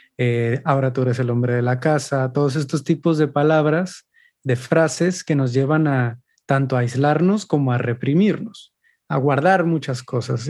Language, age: Spanish, 30-49